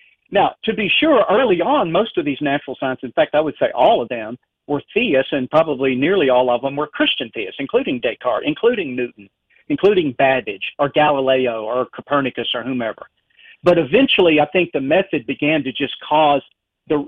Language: English